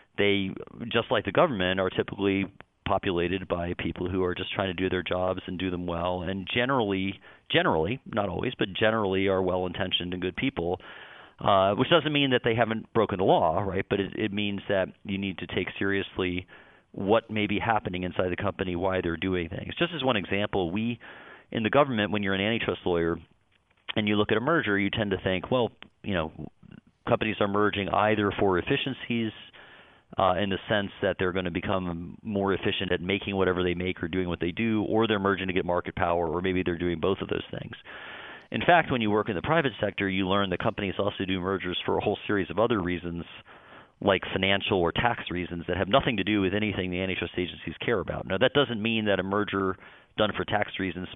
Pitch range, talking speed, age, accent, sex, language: 90-105 Hz, 220 wpm, 40-59, American, male, English